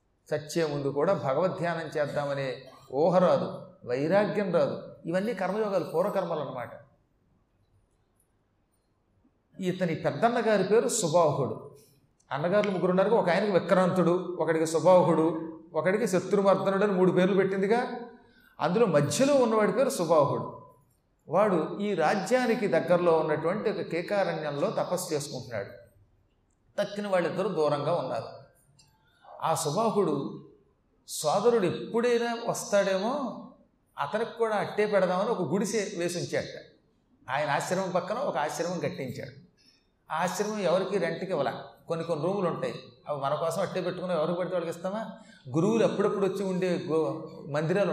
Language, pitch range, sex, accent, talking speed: Telugu, 145-195 Hz, male, native, 115 wpm